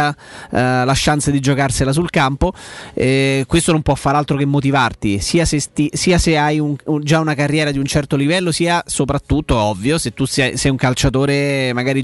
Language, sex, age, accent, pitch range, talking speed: Italian, male, 30-49, native, 130-155 Hz, 195 wpm